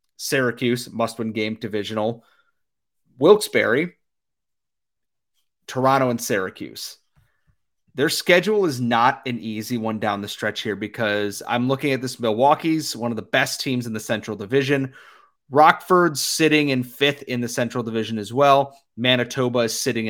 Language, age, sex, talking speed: English, 30-49, male, 140 wpm